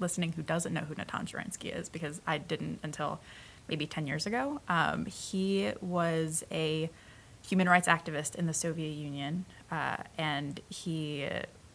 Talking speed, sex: 155 wpm, female